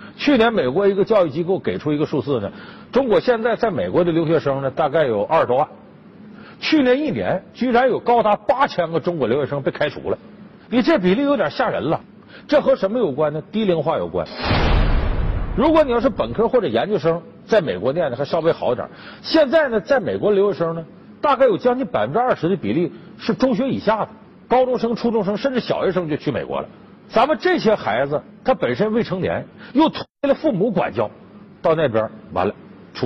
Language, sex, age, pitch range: Chinese, male, 50-69, 175-260 Hz